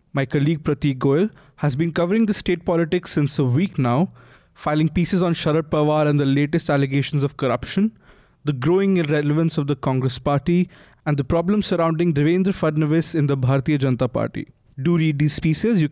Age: 20-39